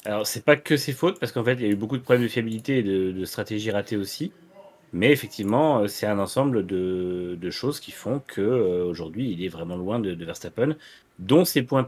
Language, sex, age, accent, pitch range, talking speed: French, male, 30-49, French, 100-125 Hz, 235 wpm